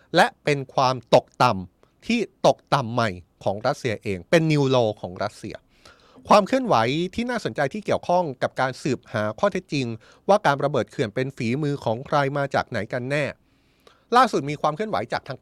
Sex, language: male, Thai